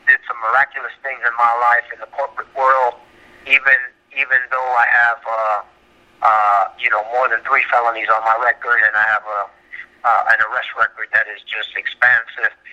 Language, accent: English, American